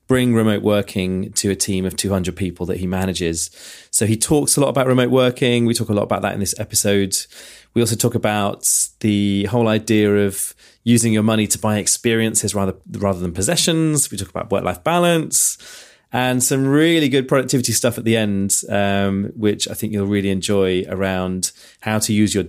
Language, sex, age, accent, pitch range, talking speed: English, male, 30-49, British, 95-125 Hz, 195 wpm